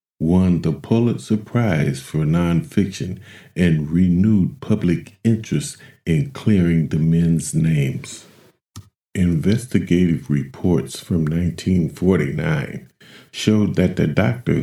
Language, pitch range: English, 85-110 Hz